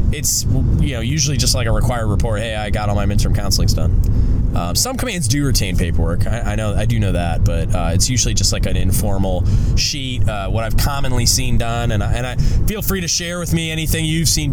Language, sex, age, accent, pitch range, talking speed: English, male, 20-39, American, 95-115 Hz, 240 wpm